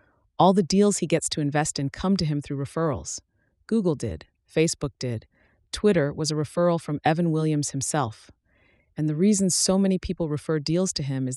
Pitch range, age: 135-170 Hz, 30-49